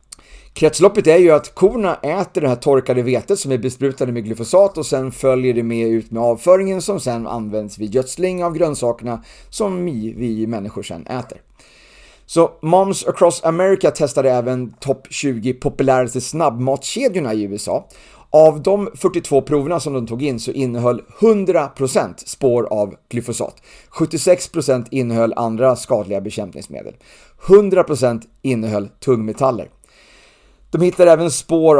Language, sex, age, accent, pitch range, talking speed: Swedish, male, 30-49, native, 120-155 Hz, 140 wpm